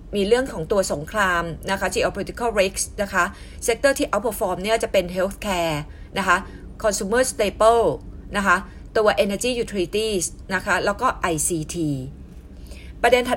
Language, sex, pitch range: Thai, female, 175-235 Hz